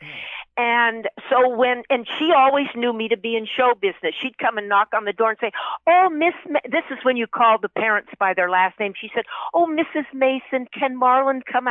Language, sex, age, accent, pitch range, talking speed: English, female, 50-69, American, 190-255 Hz, 220 wpm